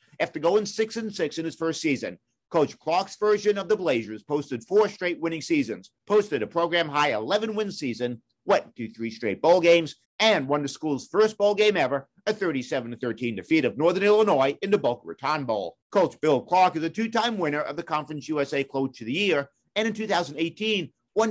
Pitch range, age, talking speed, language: 135-200 Hz, 50-69, 195 wpm, English